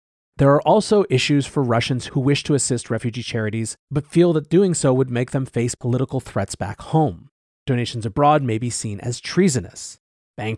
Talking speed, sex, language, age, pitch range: 185 wpm, male, English, 30-49, 115-150 Hz